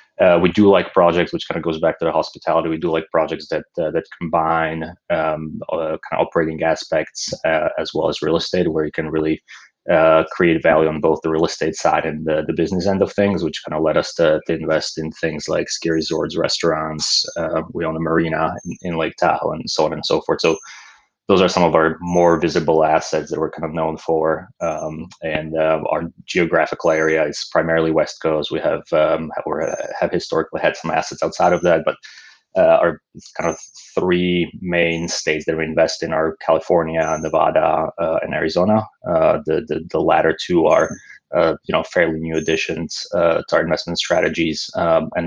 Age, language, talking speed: 20-39, English, 205 wpm